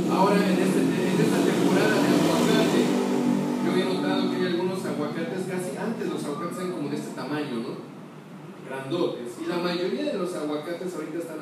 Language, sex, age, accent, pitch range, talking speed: Spanish, male, 40-59, Mexican, 155-200 Hz, 180 wpm